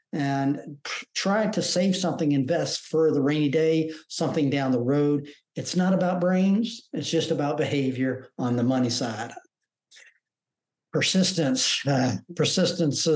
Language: English